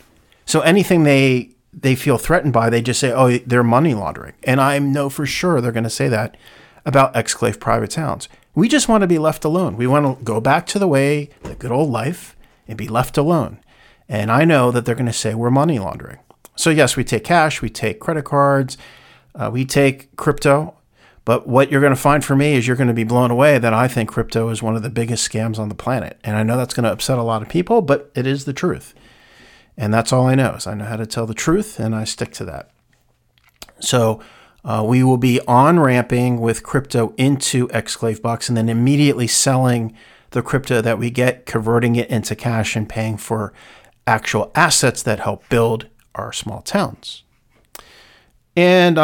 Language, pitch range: English, 115-145 Hz